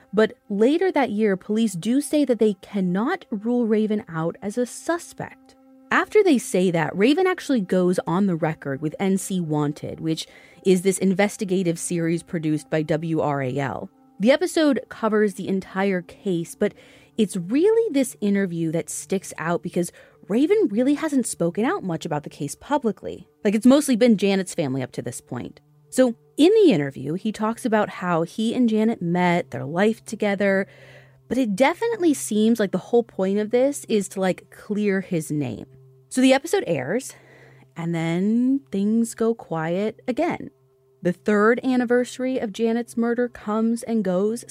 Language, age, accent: English, 30-49, American